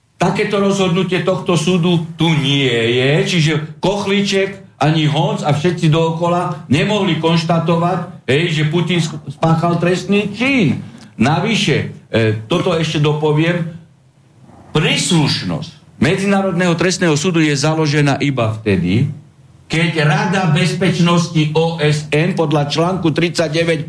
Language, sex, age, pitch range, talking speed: Slovak, male, 60-79, 140-175 Hz, 100 wpm